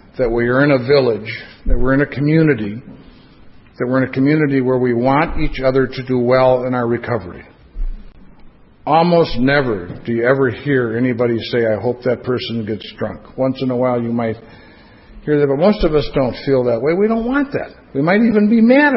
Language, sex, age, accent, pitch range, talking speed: English, male, 60-79, American, 125-160 Hz, 210 wpm